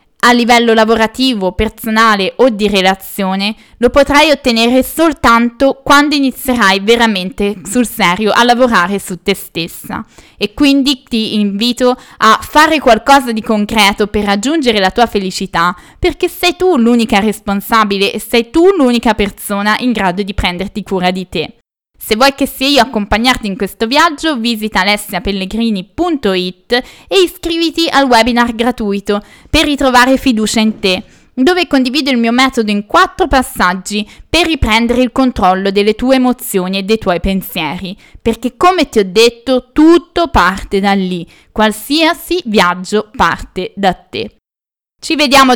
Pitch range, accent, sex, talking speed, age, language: 200-265 Hz, native, female, 140 wpm, 20-39, Italian